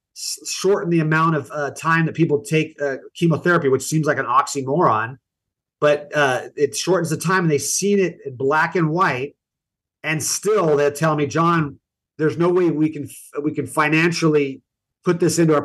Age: 30-49